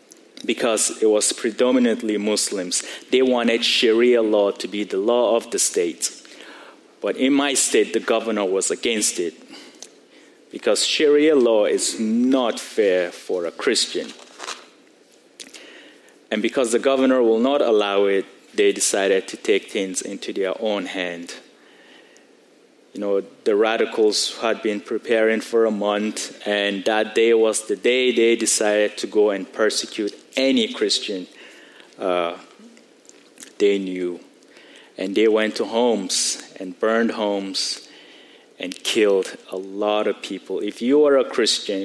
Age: 30-49